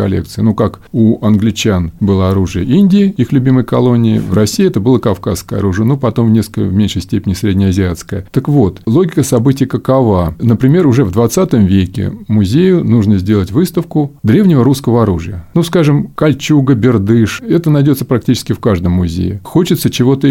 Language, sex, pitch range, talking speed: Russian, male, 100-135 Hz, 160 wpm